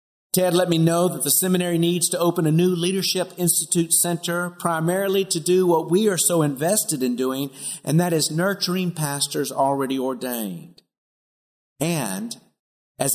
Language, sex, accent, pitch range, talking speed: English, male, American, 140-175 Hz, 155 wpm